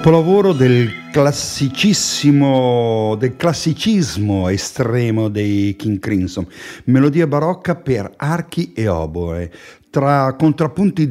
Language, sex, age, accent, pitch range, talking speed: Italian, male, 50-69, native, 100-150 Hz, 90 wpm